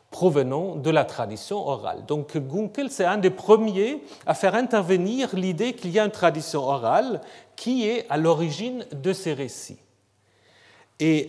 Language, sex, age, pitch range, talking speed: French, male, 40-59, 135-220 Hz, 155 wpm